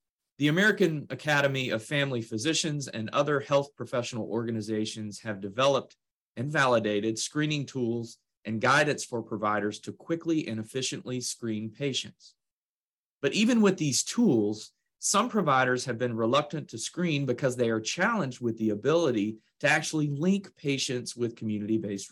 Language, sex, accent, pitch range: English, male, American, 115-165 Hz